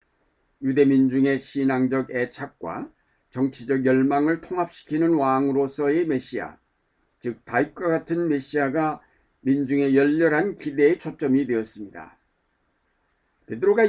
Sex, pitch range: male, 125-155 Hz